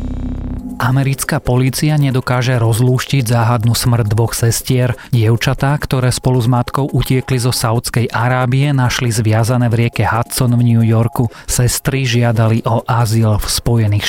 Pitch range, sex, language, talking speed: 110-130 Hz, male, Slovak, 130 wpm